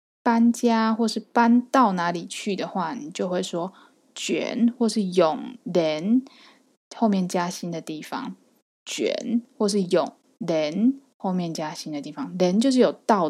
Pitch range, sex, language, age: 185-235 Hz, female, Chinese, 20-39